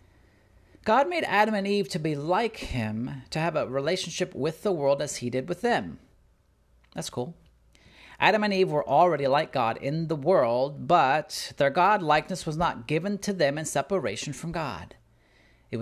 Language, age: English, 40-59